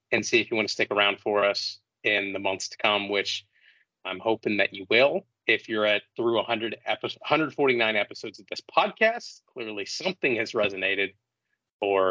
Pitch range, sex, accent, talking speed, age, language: 105-135 Hz, male, American, 185 wpm, 30-49, English